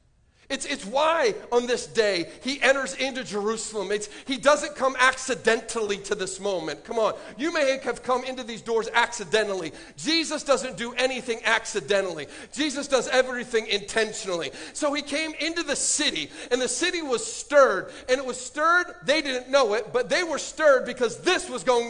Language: English